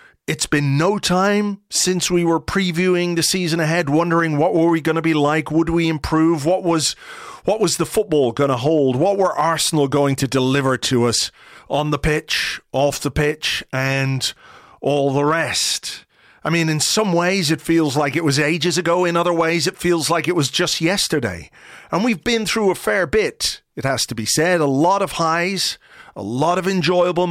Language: English